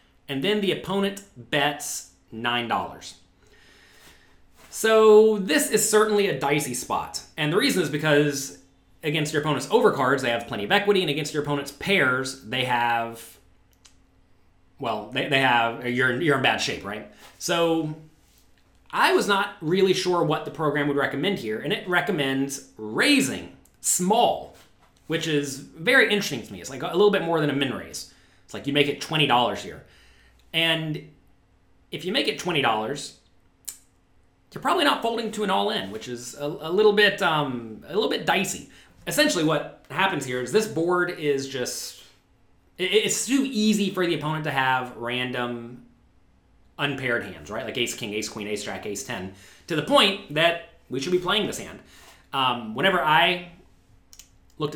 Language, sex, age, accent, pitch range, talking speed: English, male, 30-49, American, 120-175 Hz, 165 wpm